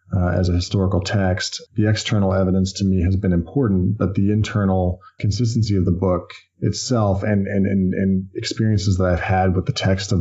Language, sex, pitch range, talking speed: English, male, 90-105 Hz, 195 wpm